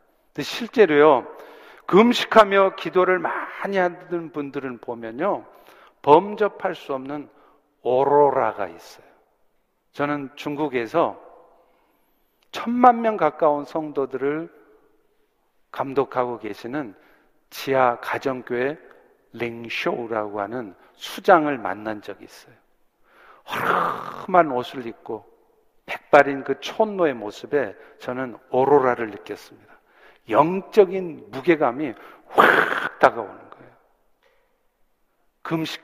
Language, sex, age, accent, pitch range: Korean, male, 50-69, native, 125-185 Hz